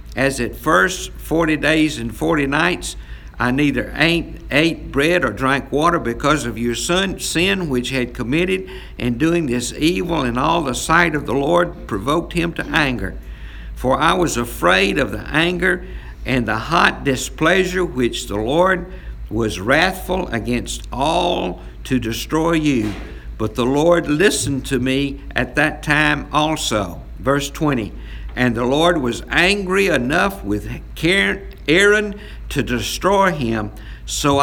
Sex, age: male, 60-79